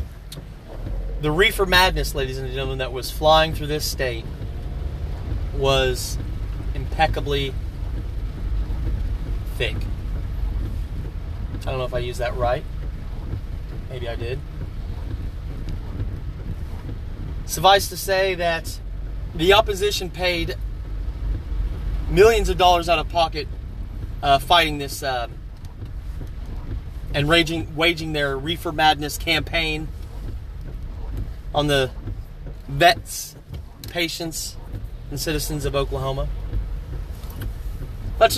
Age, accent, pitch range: 30-49, American, 95-160 Hz